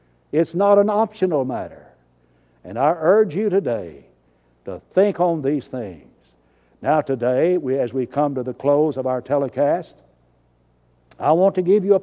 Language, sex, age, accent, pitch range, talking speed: English, male, 60-79, American, 125-175 Hz, 160 wpm